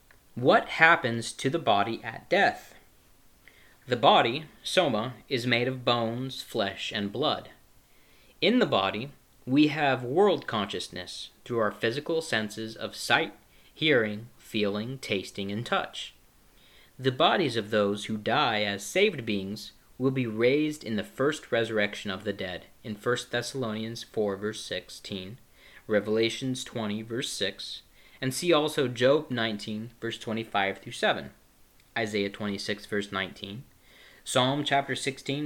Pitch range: 105-130 Hz